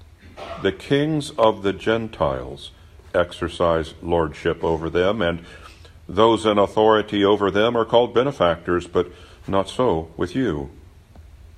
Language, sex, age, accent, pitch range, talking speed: English, male, 60-79, American, 85-105 Hz, 120 wpm